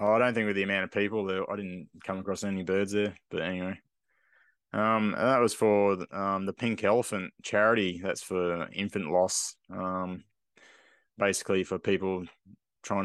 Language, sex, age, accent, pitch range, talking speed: English, male, 20-39, Australian, 95-105 Hz, 170 wpm